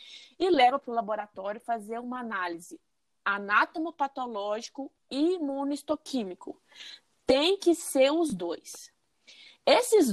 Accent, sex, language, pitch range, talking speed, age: Brazilian, female, Portuguese, 225-285 Hz, 100 wpm, 20-39